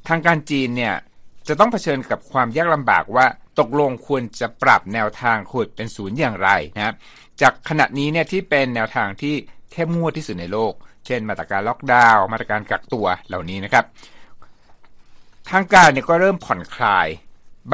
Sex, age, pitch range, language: male, 60-79, 110-145 Hz, Thai